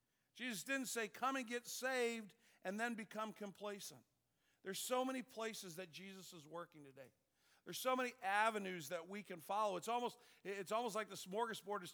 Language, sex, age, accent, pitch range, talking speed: English, male, 50-69, American, 155-215 Hz, 180 wpm